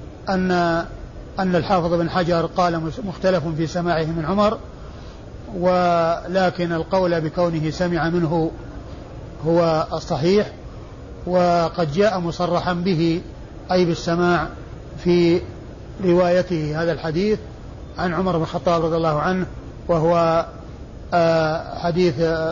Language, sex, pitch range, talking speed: Arabic, male, 165-180 Hz, 100 wpm